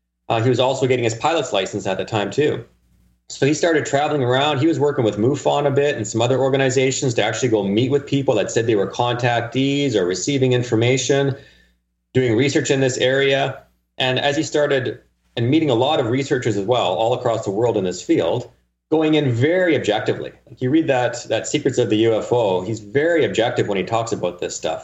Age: 30-49